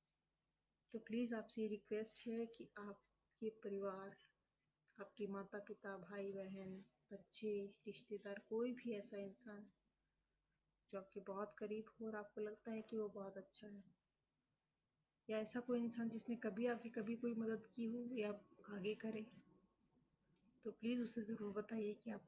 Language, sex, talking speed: Hindi, female, 150 wpm